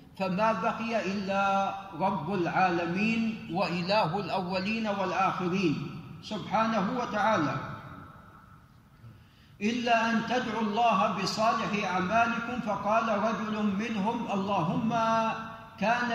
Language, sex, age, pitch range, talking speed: Arabic, male, 50-69, 175-225 Hz, 80 wpm